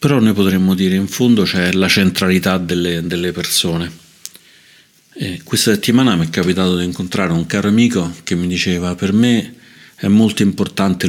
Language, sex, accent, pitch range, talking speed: Italian, male, native, 90-100 Hz, 175 wpm